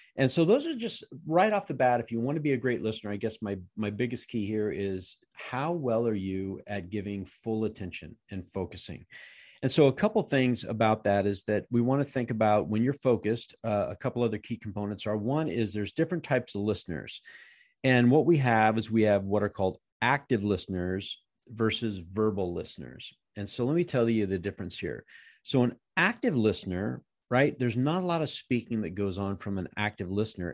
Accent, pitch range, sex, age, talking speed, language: American, 100-125 Hz, male, 50-69, 215 wpm, English